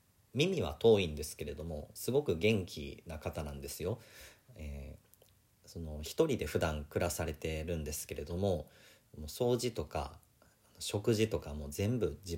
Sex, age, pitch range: male, 40-59, 75-105 Hz